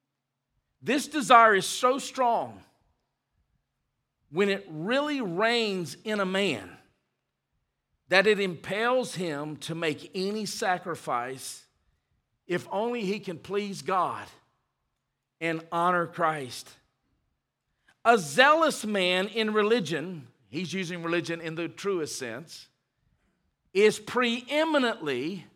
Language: English